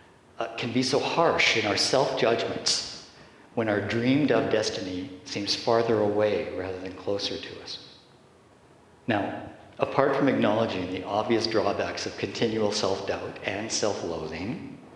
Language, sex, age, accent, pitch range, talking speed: English, male, 50-69, American, 100-130 Hz, 125 wpm